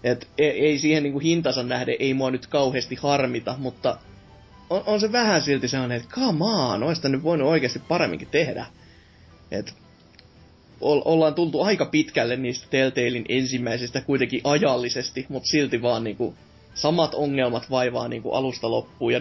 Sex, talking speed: male, 150 wpm